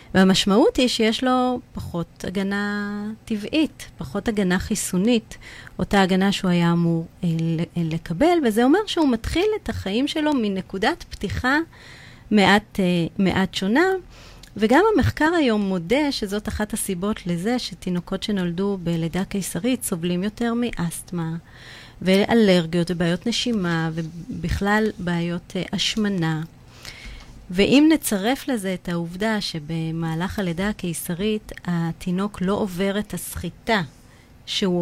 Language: Hebrew